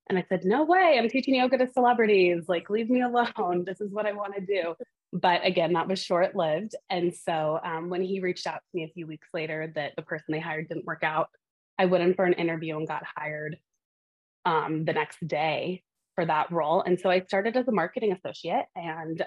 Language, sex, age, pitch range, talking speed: English, female, 20-39, 160-190 Hz, 225 wpm